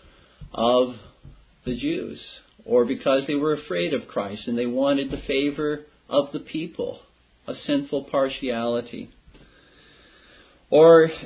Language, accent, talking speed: English, American, 115 wpm